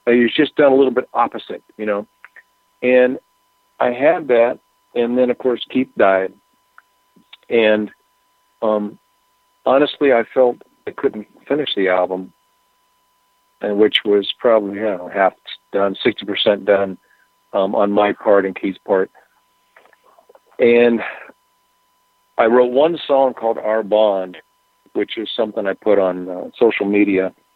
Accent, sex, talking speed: American, male, 135 wpm